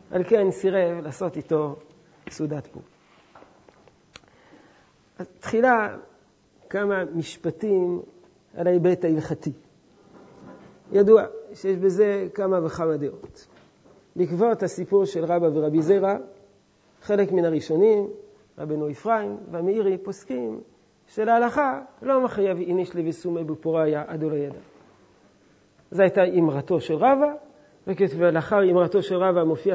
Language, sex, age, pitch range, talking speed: Hebrew, male, 40-59, 160-220 Hz, 105 wpm